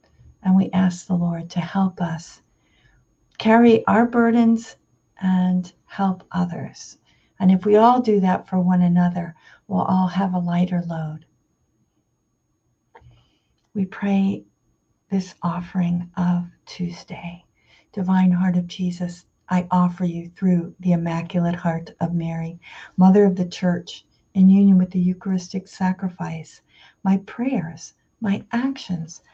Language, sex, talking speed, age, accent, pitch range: English, female, 125 wpm, 50-69, American, 175-200 Hz